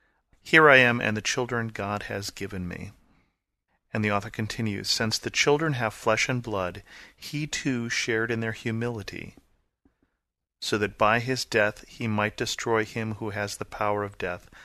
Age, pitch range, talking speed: 40-59, 100-115 Hz, 170 wpm